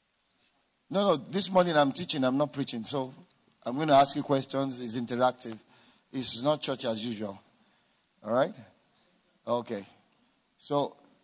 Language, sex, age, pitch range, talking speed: English, male, 50-69, 120-165 Hz, 145 wpm